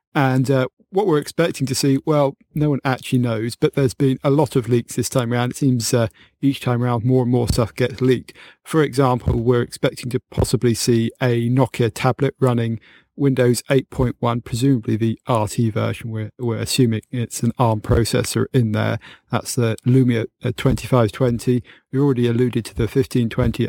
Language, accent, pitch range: English, British, 115-135 Hz